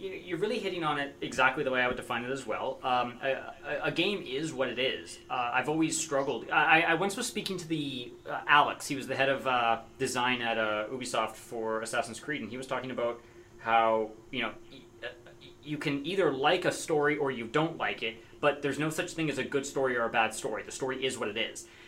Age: 30-49